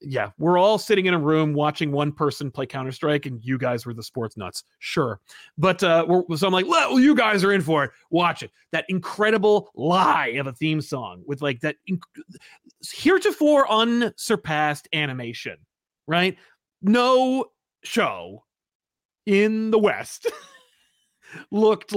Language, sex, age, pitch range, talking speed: English, male, 30-49, 120-170 Hz, 155 wpm